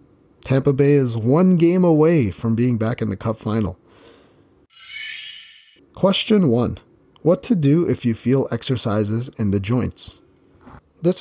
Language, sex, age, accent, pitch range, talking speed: English, male, 30-49, American, 110-150 Hz, 140 wpm